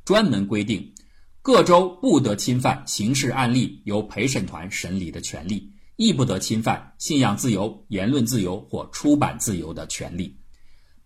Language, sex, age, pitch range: Chinese, male, 50-69, 95-140 Hz